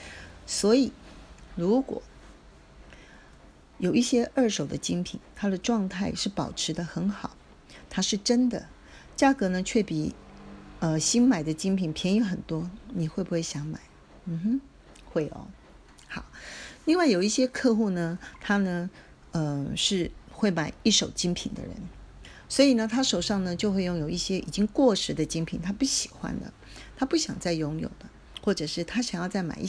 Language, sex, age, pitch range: Chinese, female, 40-59, 170-230 Hz